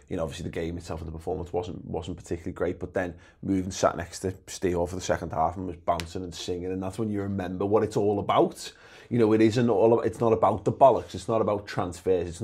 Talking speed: 260 wpm